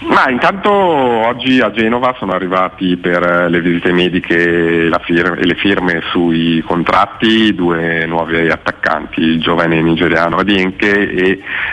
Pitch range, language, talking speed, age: 90-105 Hz, Italian, 120 wpm, 40-59